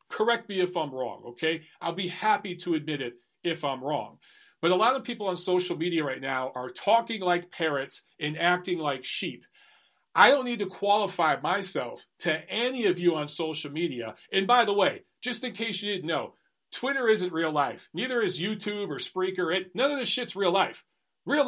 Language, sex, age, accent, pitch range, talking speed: English, male, 40-59, American, 150-195 Hz, 200 wpm